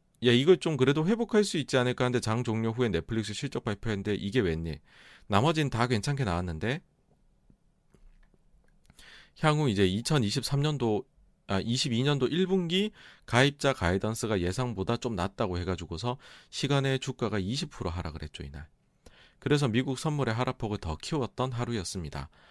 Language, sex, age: Korean, male, 40-59